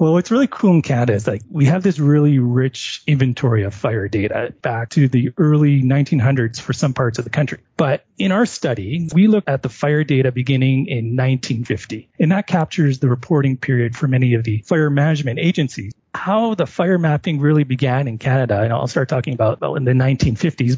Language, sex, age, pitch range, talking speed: English, male, 30-49, 125-160 Hz, 205 wpm